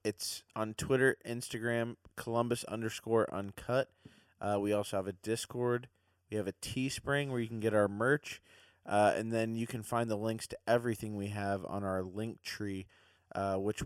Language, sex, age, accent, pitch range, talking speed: English, male, 20-39, American, 95-115 Hz, 180 wpm